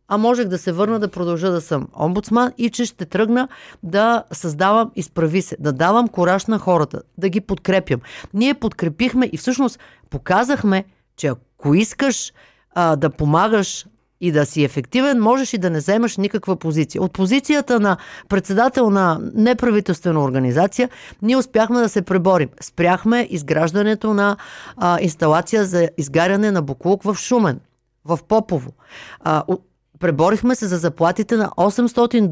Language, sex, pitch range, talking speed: Bulgarian, female, 175-230 Hz, 150 wpm